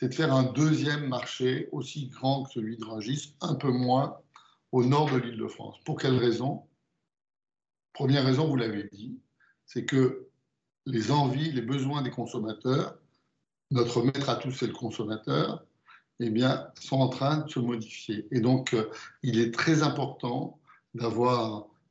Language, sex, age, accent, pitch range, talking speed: French, male, 60-79, French, 120-145 Hz, 155 wpm